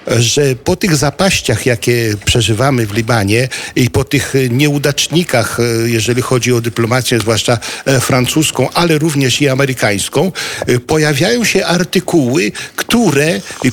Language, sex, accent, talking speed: Polish, male, native, 120 wpm